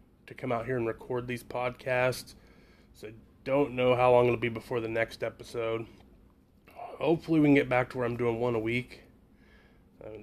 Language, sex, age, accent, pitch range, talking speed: English, male, 20-39, American, 115-130 Hz, 195 wpm